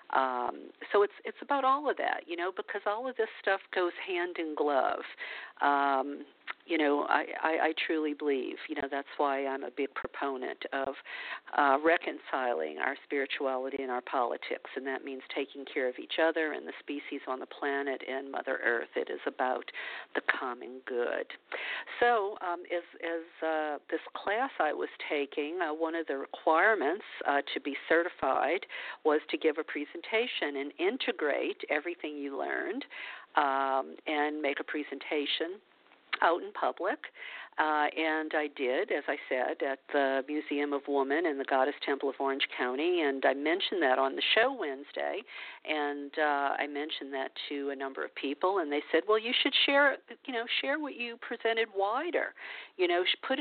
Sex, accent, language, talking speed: female, American, English, 175 wpm